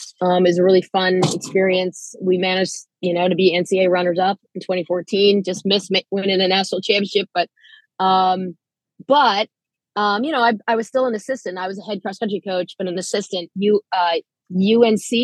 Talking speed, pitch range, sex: 195 wpm, 180-205 Hz, female